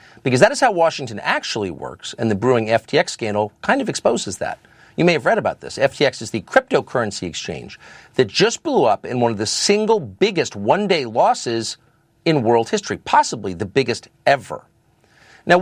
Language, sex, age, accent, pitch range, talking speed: English, male, 50-69, American, 105-150 Hz, 180 wpm